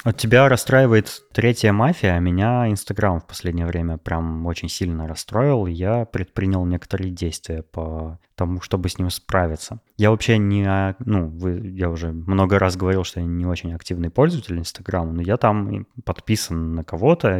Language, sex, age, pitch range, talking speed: Russian, male, 20-39, 90-110 Hz, 160 wpm